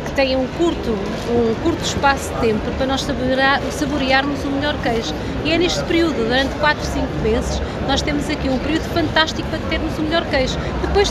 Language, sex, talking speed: Portuguese, female, 190 wpm